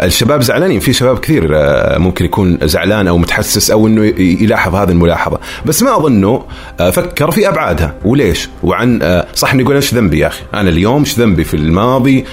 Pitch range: 85-130 Hz